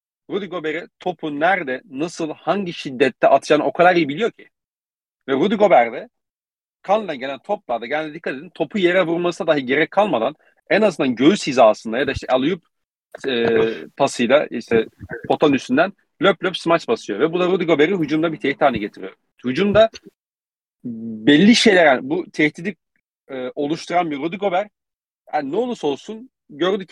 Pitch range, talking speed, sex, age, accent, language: 125-175 Hz, 155 wpm, male, 40-59, native, Turkish